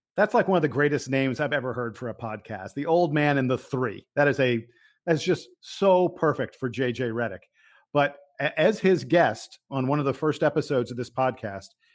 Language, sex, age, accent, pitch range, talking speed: English, male, 50-69, American, 135-175 Hz, 210 wpm